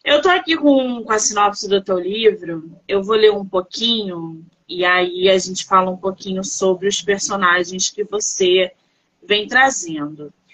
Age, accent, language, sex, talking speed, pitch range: 20-39, Brazilian, Portuguese, female, 165 wpm, 185-275 Hz